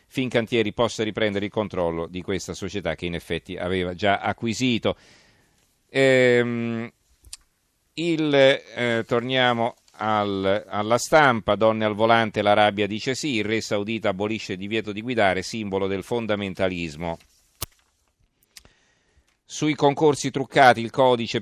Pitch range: 100-125 Hz